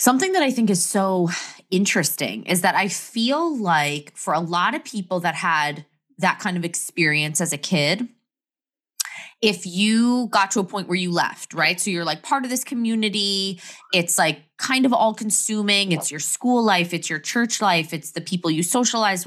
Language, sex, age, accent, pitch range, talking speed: English, female, 20-39, American, 165-220 Hz, 195 wpm